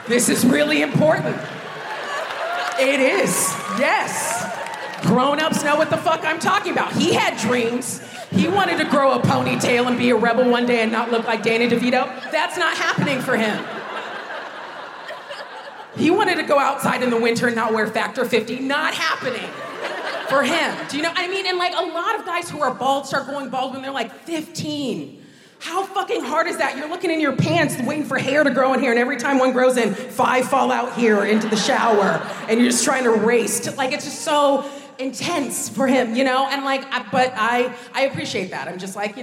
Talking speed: 210 wpm